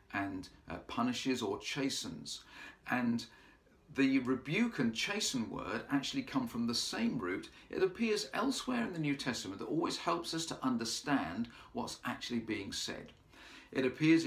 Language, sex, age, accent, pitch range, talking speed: English, male, 50-69, British, 115-150 Hz, 150 wpm